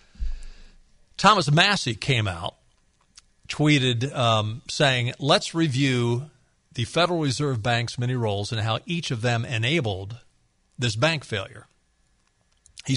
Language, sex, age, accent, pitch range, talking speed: English, male, 50-69, American, 110-145 Hz, 115 wpm